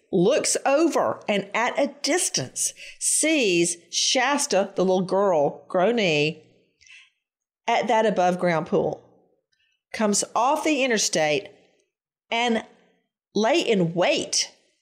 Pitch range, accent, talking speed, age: 175-240 Hz, American, 100 wpm, 50-69